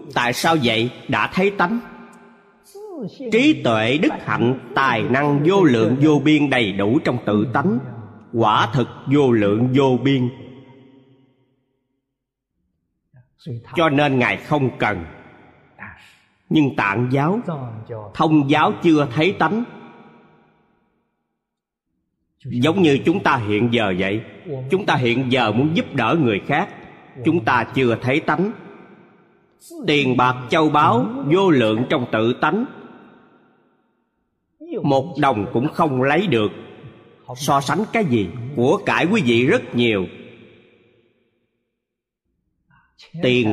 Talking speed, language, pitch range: 120 wpm, Vietnamese, 120-155 Hz